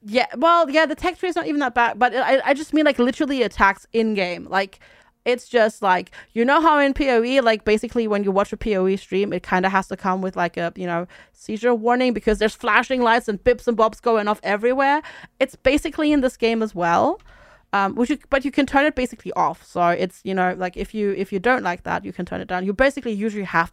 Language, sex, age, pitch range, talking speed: English, female, 30-49, 190-260 Hz, 250 wpm